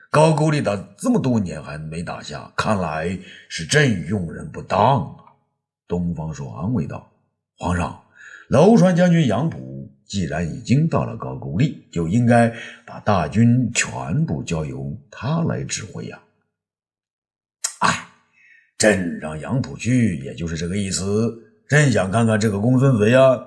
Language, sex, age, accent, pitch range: Chinese, male, 50-69, native, 100-170 Hz